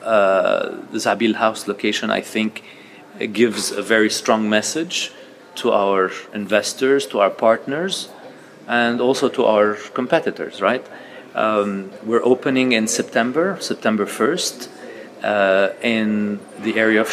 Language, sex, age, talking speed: English, male, 40-59, 125 wpm